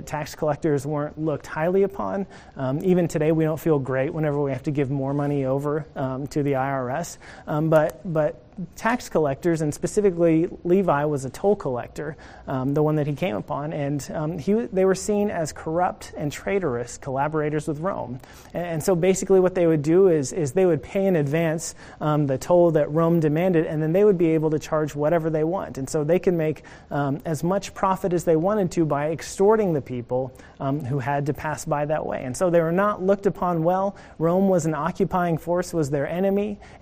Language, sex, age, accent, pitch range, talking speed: English, male, 30-49, American, 140-175 Hz, 215 wpm